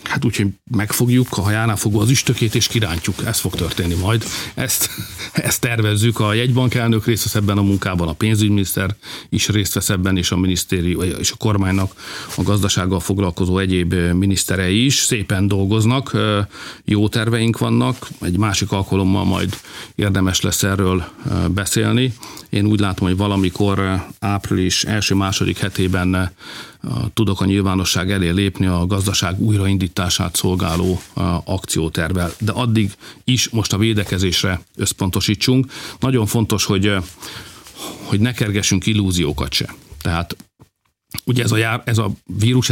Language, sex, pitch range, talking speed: Hungarian, male, 95-110 Hz, 135 wpm